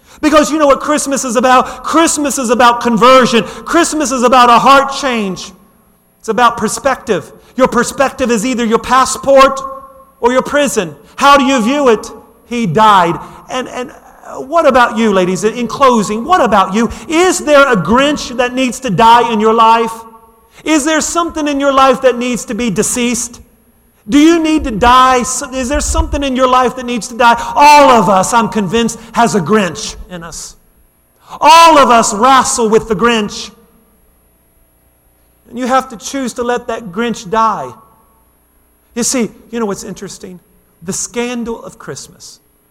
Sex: male